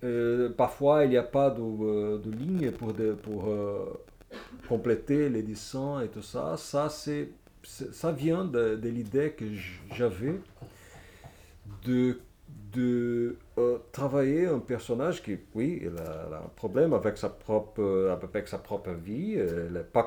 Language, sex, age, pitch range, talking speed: French, male, 40-59, 105-145 Hz, 155 wpm